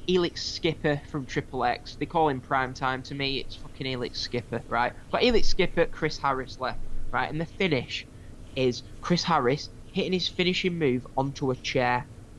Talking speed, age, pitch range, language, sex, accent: 180 wpm, 10-29, 125-175 Hz, English, male, British